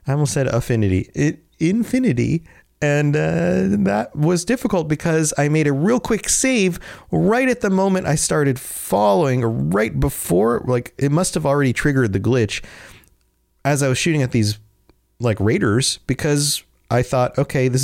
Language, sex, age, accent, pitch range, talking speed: English, male, 30-49, American, 105-140 Hz, 165 wpm